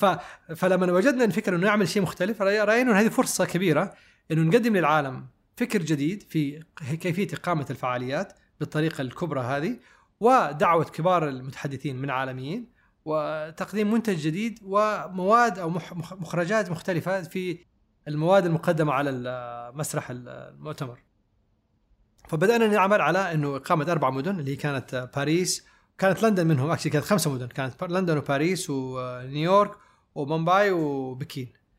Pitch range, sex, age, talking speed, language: 135-190 Hz, male, 30-49, 130 wpm, Arabic